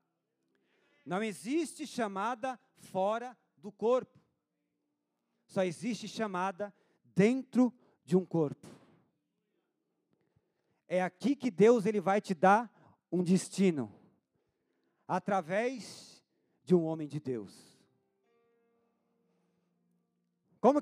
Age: 40-59